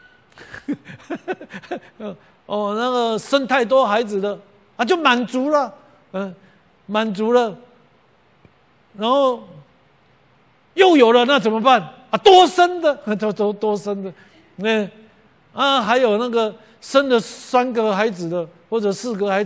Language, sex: Chinese, male